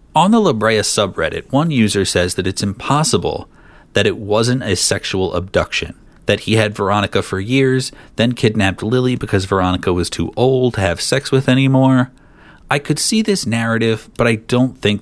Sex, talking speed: male, 180 wpm